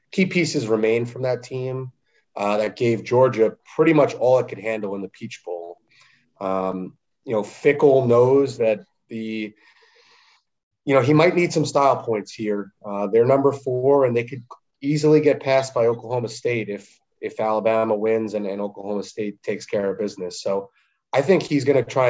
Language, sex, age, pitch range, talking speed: English, male, 30-49, 105-130 Hz, 185 wpm